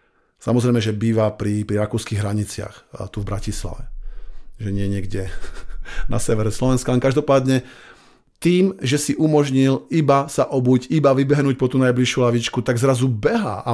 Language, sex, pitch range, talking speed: Slovak, male, 115-140 Hz, 155 wpm